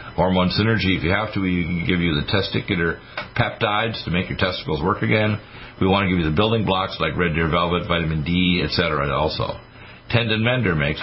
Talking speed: 205 wpm